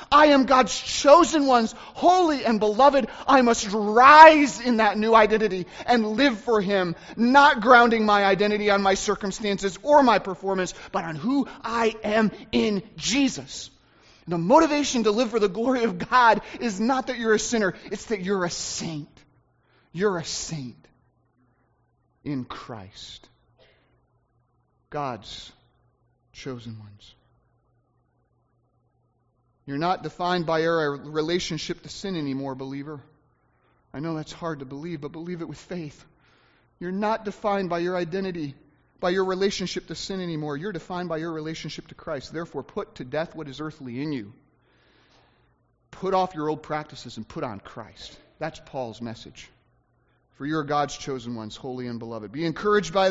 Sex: male